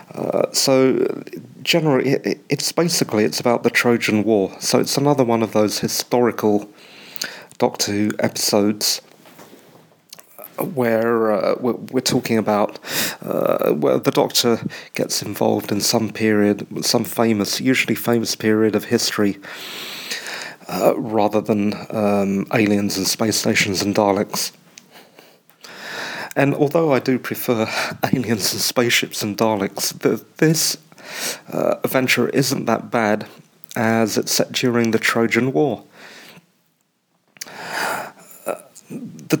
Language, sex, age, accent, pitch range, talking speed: English, male, 40-59, British, 105-125 Hz, 115 wpm